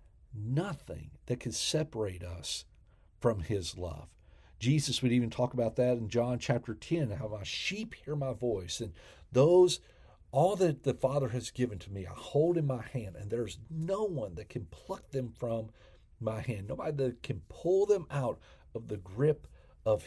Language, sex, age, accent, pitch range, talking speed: English, male, 50-69, American, 90-140 Hz, 180 wpm